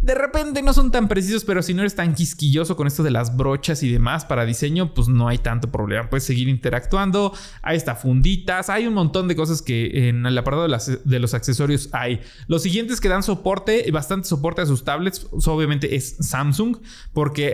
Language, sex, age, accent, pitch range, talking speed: Spanish, male, 20-39, Mexican, 130-175 Hz, 200 wpm